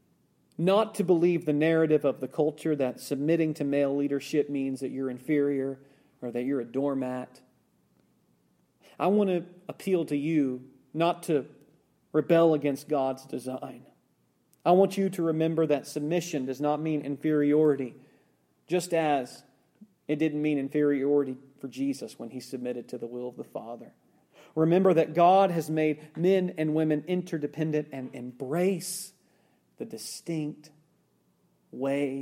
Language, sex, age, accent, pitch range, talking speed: English, male, 40-59, American, 130-160 Hz, 140 wpm